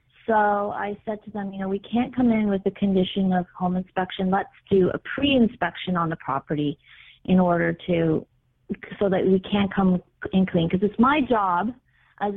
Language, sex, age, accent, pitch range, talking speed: English, female, 30-49, American, 185-230 Hz, 190 wpm